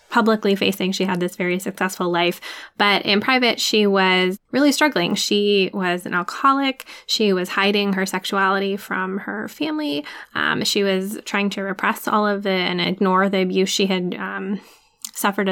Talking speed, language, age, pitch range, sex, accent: 170 wpm, English, 10-29, 180-205 Hz, female, American